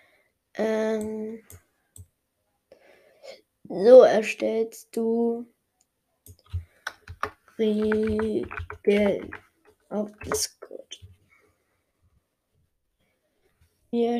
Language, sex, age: German, female, 20-39